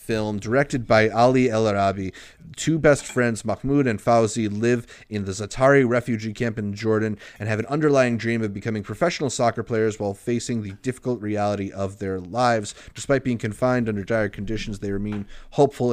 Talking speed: 175 wpm